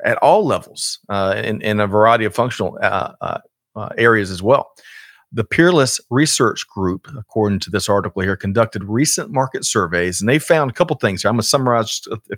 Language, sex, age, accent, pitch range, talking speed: English, male, 40-59, American, 105-135 Hz, 200 wpm